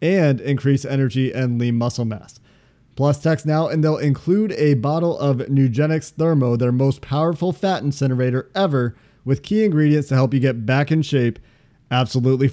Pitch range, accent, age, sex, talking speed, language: 135-170 Hz, American, 30-49, male, 170 wpm, English